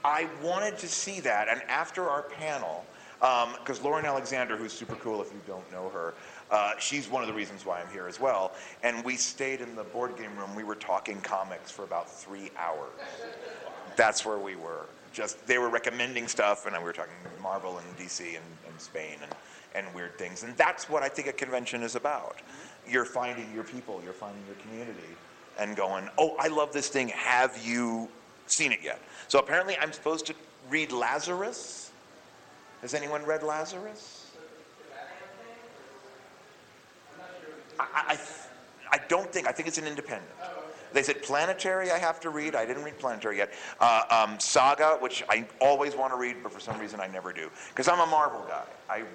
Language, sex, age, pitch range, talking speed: English, male, 30-49, 110-155 Hz, 190 wpm